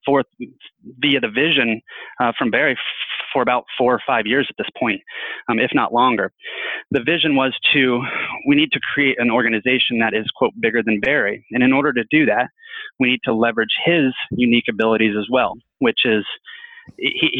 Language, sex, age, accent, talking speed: English, male, 30-49, American, 190 wpm